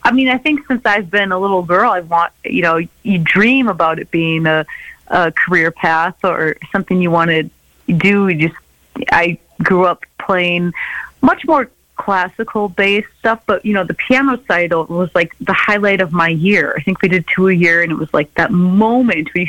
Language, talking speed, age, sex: English, 205 wpm, 30-49, female